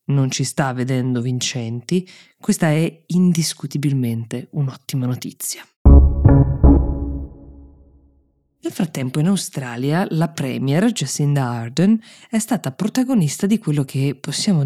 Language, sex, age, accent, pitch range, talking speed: Italian, female, 20-39, native, 135-180 Hz, 100 wpm